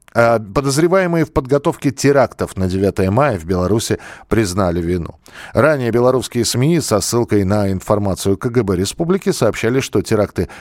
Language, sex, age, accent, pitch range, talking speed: Russian, male, 40-59, native, 100-135 Hz, 130 wpm